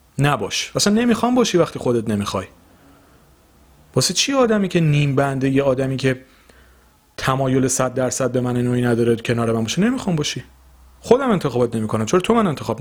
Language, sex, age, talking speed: Persian, male, 40-59, 165 wpm